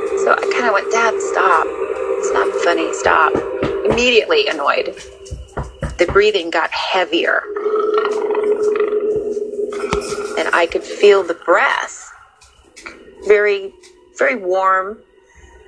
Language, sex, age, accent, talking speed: English, female, 30-49, American, 100 wpm